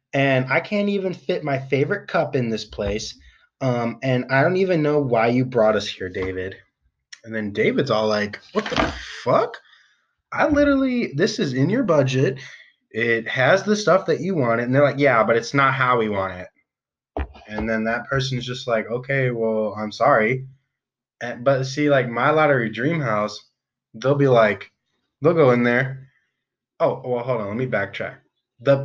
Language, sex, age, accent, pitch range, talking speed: English, male, 20-39, American, 110-140 Hz, 185 wpm